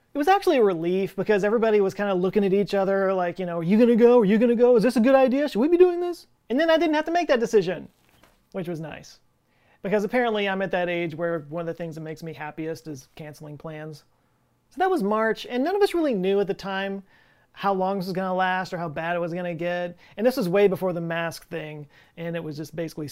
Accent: American